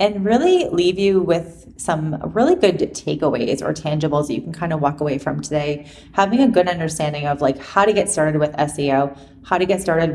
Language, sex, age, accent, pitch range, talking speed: English, female, 30-49, American, 155-195 Hz, 215 wpm